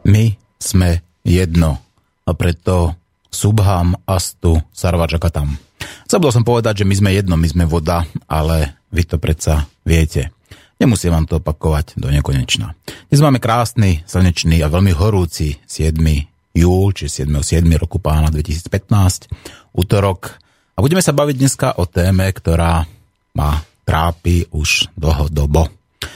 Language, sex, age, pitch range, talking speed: Slovak, male, 30-49, 80-100 Hz, 130 wpm